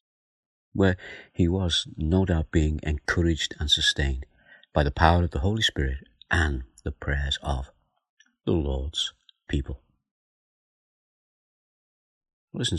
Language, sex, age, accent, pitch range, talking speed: English, male, 50-69, British, 75-90 Hz, 115 wpm